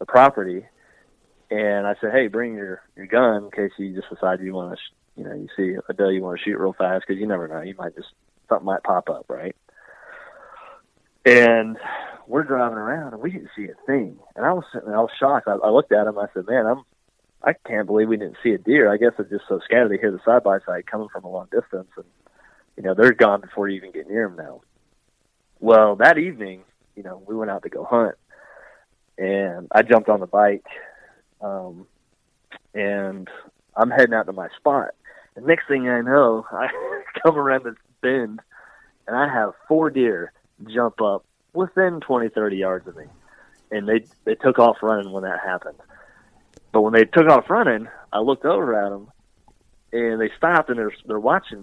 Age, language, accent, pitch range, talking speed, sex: 30-49, English, American, 100-125 Hz, 210 wpm, male